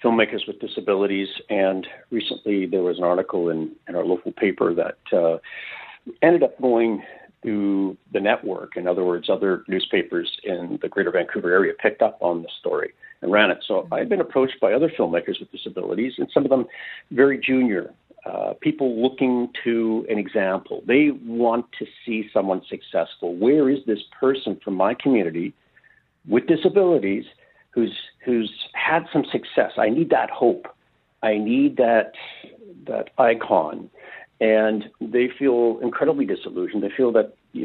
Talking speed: 160 wpm